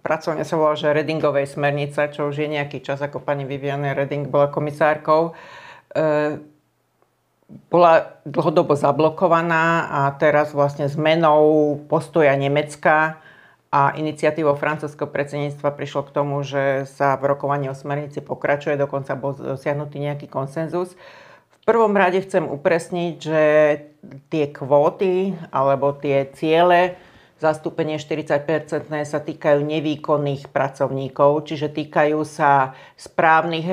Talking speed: 120 wpm